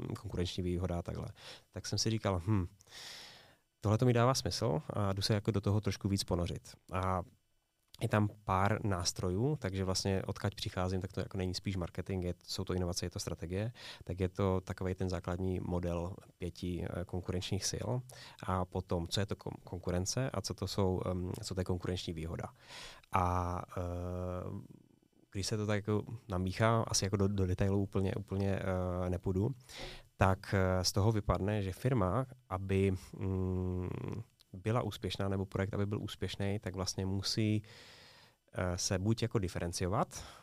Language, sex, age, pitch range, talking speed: Czech, male, 20-39, 90-105 Hz, 165 wpm